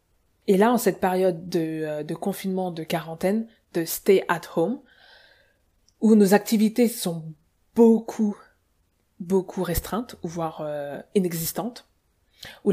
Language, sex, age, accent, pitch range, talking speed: English, female, 20-39, French, 175-220 Hz, 125 wpm